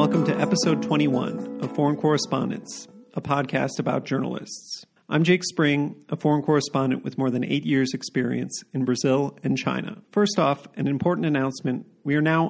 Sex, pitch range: male, 130-160 Hz